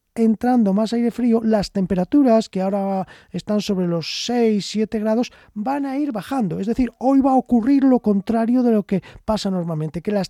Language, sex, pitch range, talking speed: Spanish, male, 185-235 Hz, 190 wpm